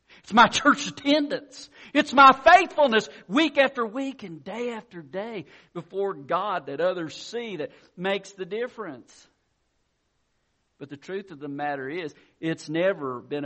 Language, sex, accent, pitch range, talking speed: English, male, American, 125-175 Hz, 145 wpm